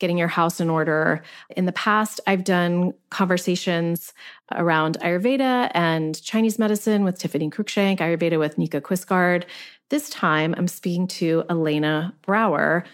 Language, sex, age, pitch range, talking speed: English, female, 30-49, 170-220 Hz, 140 wpm